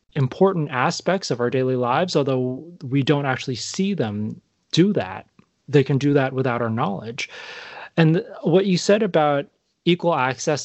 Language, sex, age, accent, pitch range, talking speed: English, male, 20-39, American, 120-150 Hz, 160 wpm